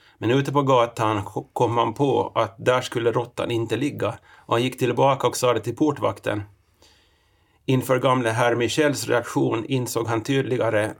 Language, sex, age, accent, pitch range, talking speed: Swedish, male, 30-49, native, 105-125 Hz, 165 wpm